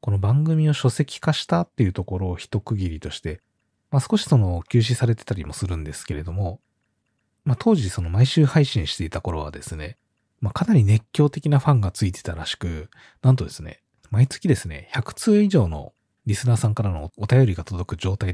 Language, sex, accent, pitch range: Japanese, male, native, 90-130 Hz